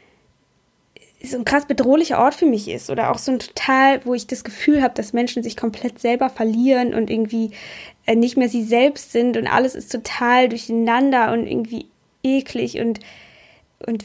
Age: 10-29